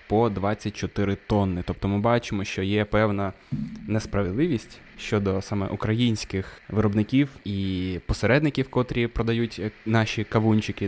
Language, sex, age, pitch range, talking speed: Ukrainian, male, 20-39, 95-120 Hz, 110 wpm